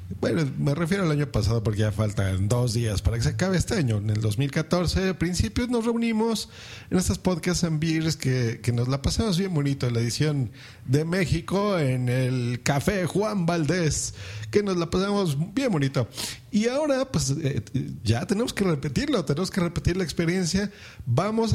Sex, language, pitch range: male, Spanish, 125-185 Hz